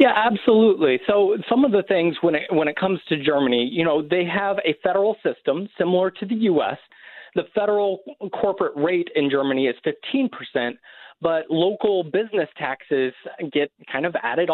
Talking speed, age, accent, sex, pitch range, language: 175 wpm, 30-49, American, male, 140-185 Hz, English